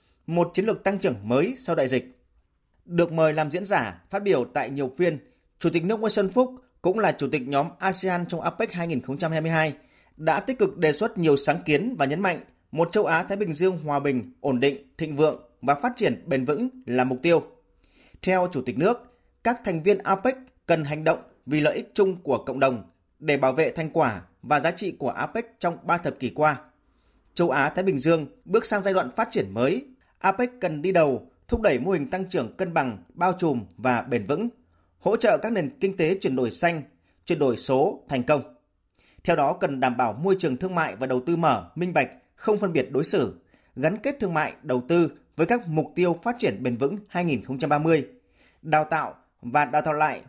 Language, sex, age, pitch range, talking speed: Vietnamese, male, 30-49, 140-195 Hz, 220 wpm